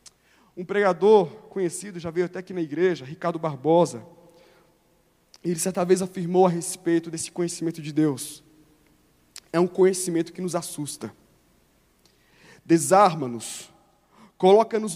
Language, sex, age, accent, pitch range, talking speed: Portuguese, male, 20-39, Brazilian, 180-245 Hz, 115 wpm